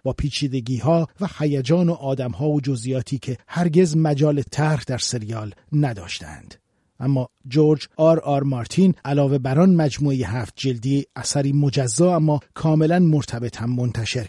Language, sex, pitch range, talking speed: Persian, male, 120-150 Hz, 145 wpm